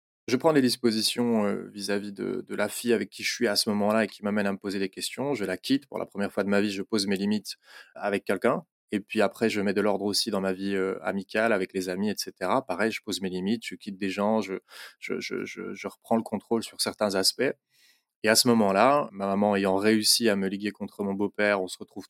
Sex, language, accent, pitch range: male, French, French, 95-110 Hz